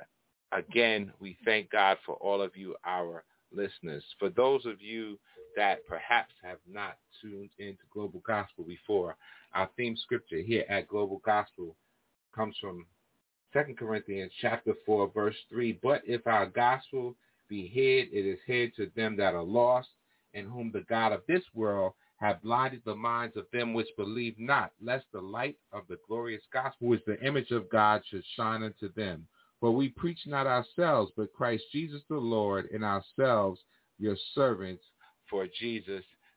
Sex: male